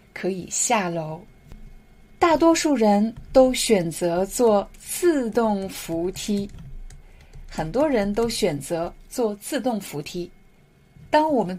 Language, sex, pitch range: Chinese, female, 180-265 Hz